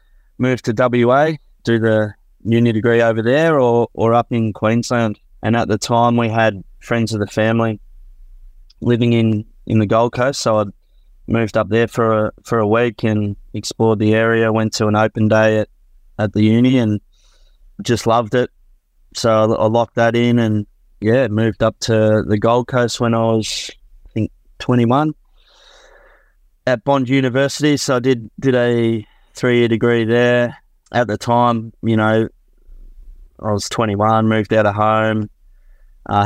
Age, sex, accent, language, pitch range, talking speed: 20-39, male, Australian, English, 105-115 Hz, 165 wpm